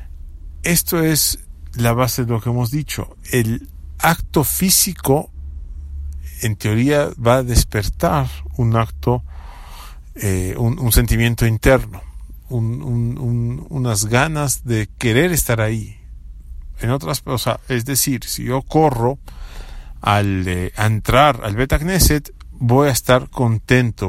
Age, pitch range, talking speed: 50-69, 90-130 Hz, 115 wpm